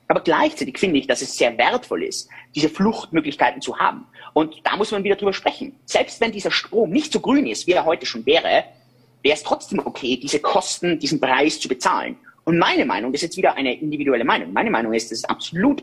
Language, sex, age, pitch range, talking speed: German, male, 30-49, 150-250 Hz, 225 wpm